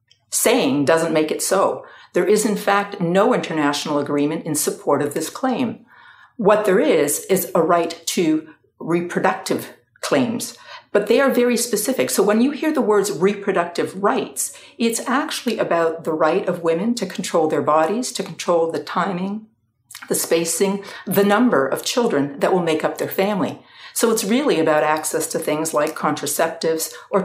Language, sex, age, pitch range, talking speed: English, female, 50-69, 155-210 Hz, 165 wpm